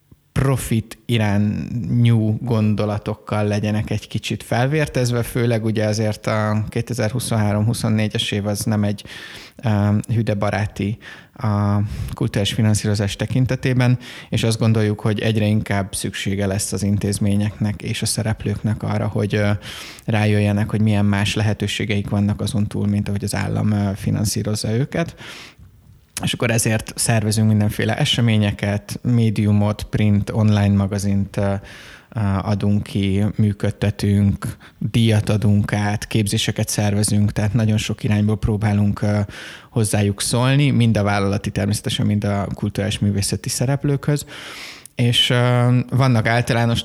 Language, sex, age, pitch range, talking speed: Hungarian, male, 20-39, 105-115 Hz, 110 wpm